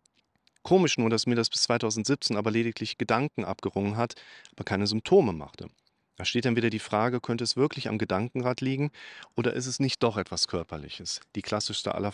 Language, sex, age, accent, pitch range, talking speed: German, male, 40-59, German, 105-125 Hz, 190 wpm